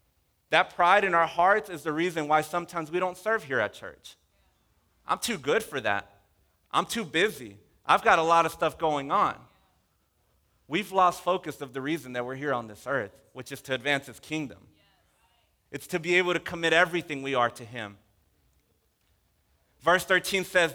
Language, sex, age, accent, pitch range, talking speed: English, male, 30-49, American, 125-180 Hz, 185 wpm